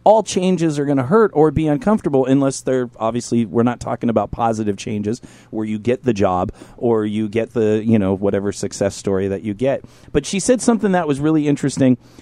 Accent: American